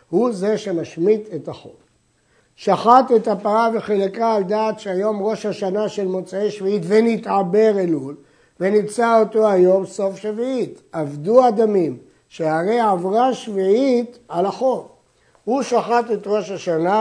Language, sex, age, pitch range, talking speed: Hebrew, male, 60-79, 165-220 Hz, 125 wpm